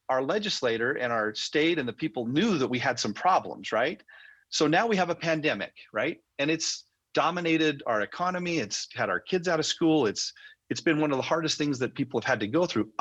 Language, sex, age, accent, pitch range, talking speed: English, male, 40-59, American, 125-170 Hz, 225 wpm